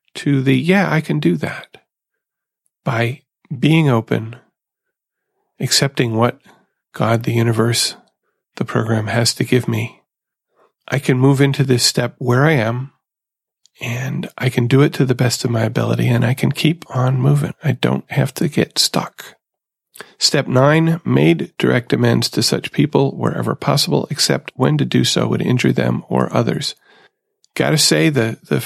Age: 40-59